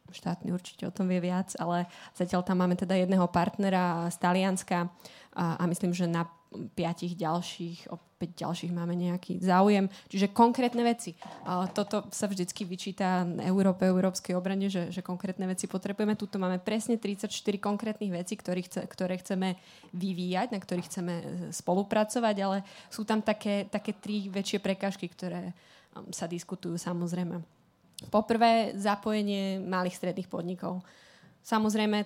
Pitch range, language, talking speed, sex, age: 180-200 Hz, Slovak, 135 wpm, female, 20-39